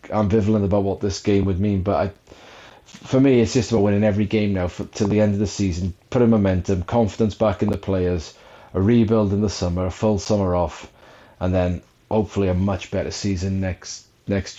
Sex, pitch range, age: male, 100-110 Hz, 30-49